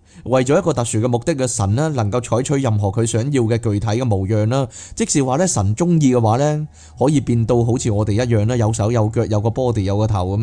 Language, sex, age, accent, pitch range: Chinese, male, 20-39, native, 100-130 Hz